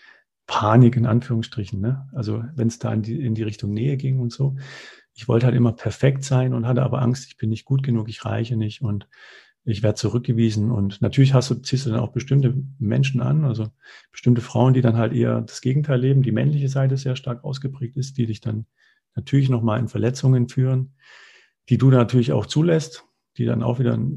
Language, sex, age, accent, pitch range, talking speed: German, male, 40-59, German, 115-135 Hz, 215 wpm